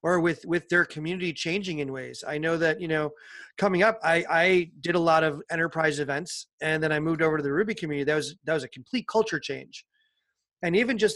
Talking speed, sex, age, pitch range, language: 230 wpm, male, 30-49, 145-175 Hz, English